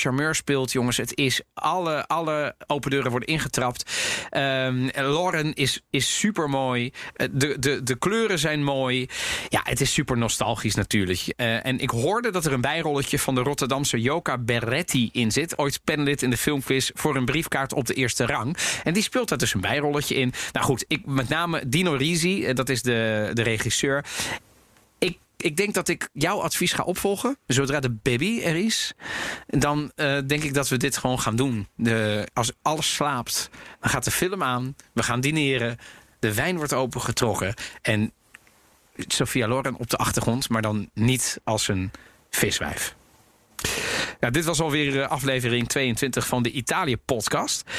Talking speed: 170 wpm